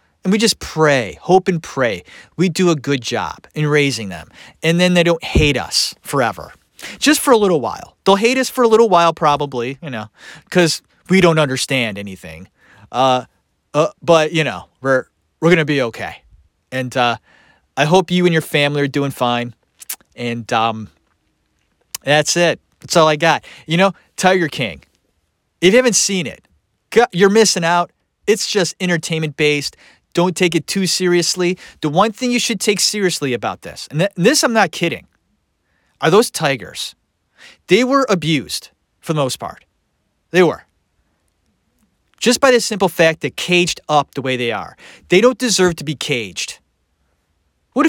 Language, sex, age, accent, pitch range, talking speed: English, male, 30-49, American, 120-190 Hz, 175 wpm